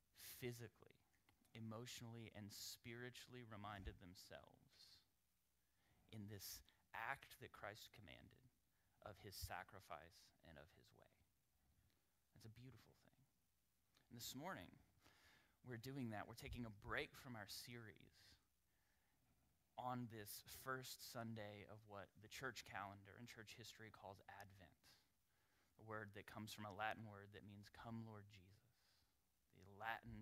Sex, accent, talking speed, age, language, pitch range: male, American, 125 wpm, 30-49, English, 95-115 Hz